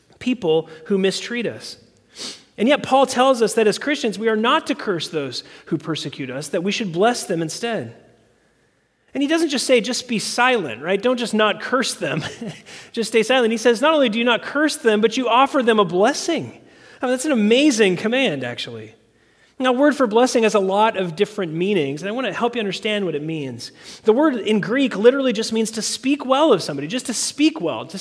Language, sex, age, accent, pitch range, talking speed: English, male, 30-49, American, 195-255 Hz, 220 wpm